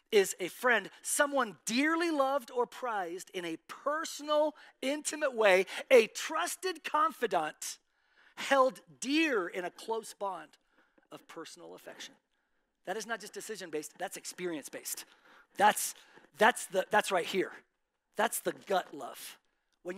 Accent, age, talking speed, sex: American, 40-59, 125 wpm, male